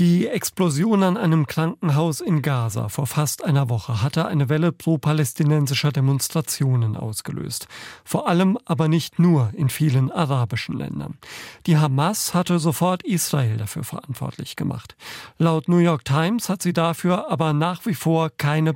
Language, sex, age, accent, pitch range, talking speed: German, male, 40-59, German, 140-175 Hz, 145 wpm